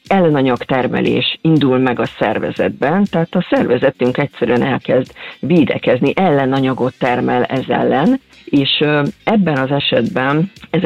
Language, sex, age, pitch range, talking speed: Hungarian, female, 50-69, 130-180 Hz, 115 wpm